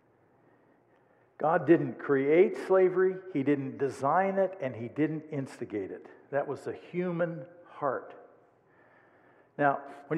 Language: English